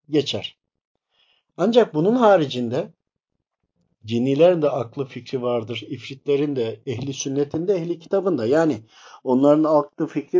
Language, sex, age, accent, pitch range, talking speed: Turkish, male, 50-69, native, 135-180 Hz, 120 wpm